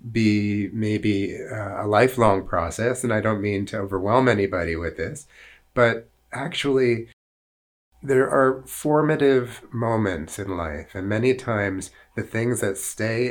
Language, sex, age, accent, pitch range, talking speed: English, male, 30-49, American, 100-120 Hz, 130 wpm